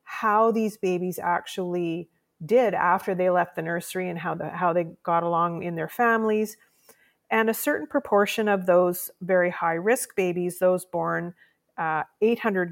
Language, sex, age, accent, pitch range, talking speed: English, female, 30-49, American, 175-205 Hz, 155 wpm